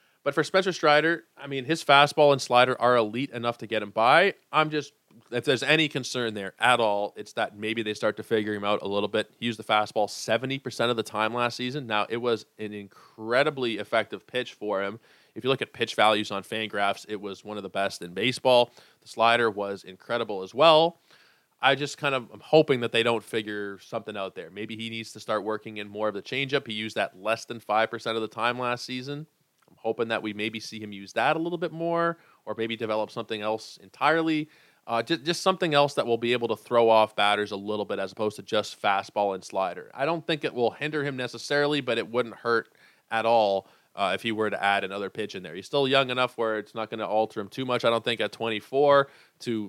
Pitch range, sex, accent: 105-135 Hz, male, American